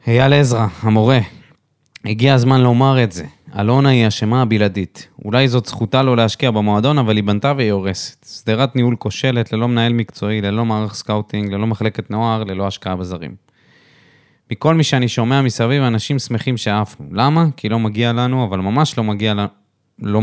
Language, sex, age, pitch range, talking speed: Hebrew, male, 20-39, 105-130 Hz, 170 wpm